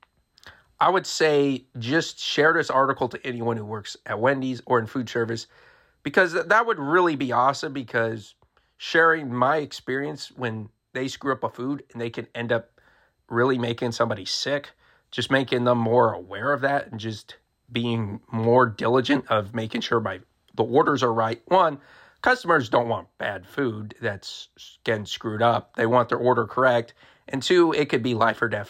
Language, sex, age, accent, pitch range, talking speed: English, male, 40-59, American, 115-140 Hz, 180 wpm